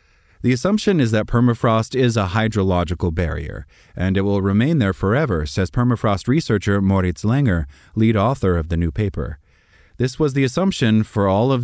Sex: male